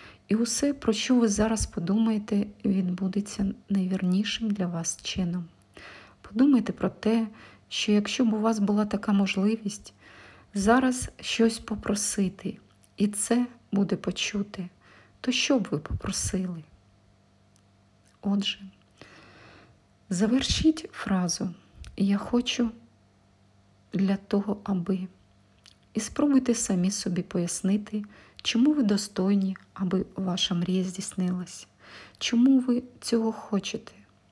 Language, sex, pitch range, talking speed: Ukrainian, female, 175-220 Hz, 105 wpm